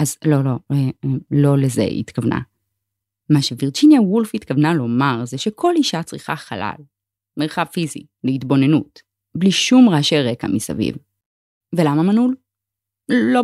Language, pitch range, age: Hebrew, 125-195 Hz, 20-39